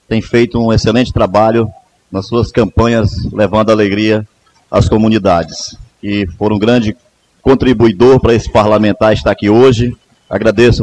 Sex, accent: male, Brazilian